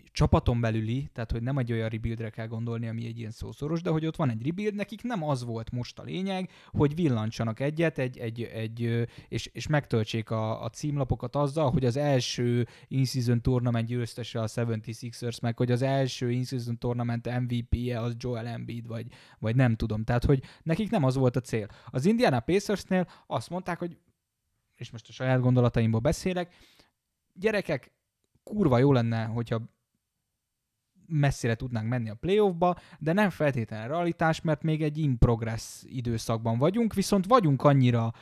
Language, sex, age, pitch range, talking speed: Hungarian, male, 20-39, 115-155 Hz, 170 wpm